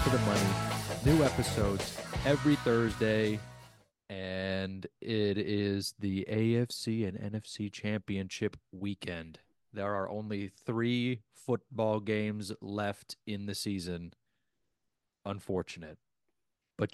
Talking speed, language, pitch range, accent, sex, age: 100 wpm, English, 100-115 Hz, American, male, 30-49